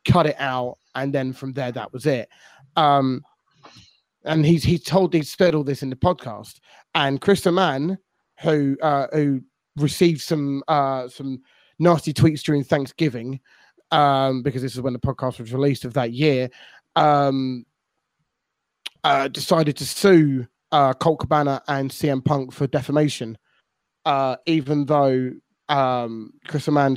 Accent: British